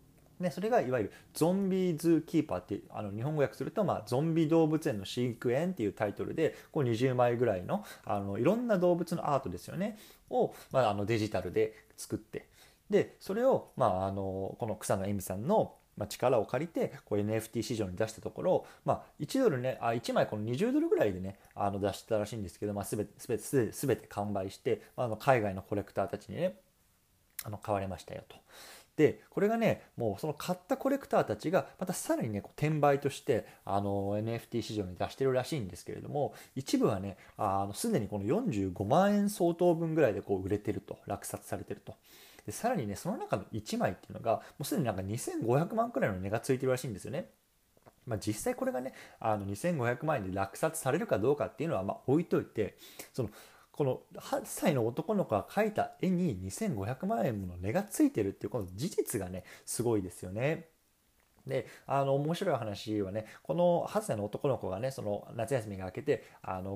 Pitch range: 100-160 Hz